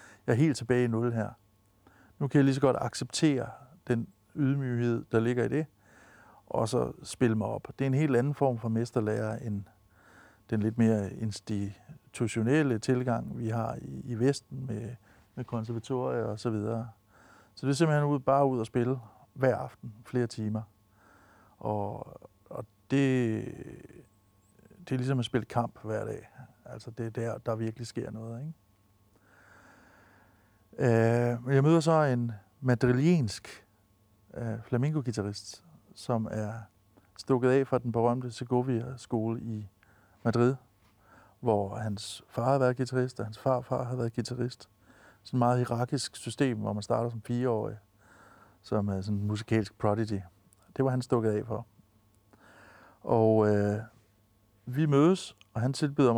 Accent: native